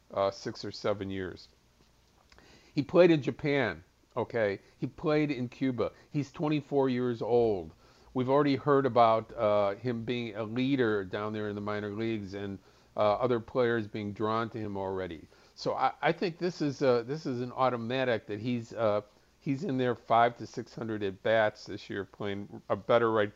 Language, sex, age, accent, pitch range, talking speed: English, male, 50-69, American, 105-125 Hz, 180 wpm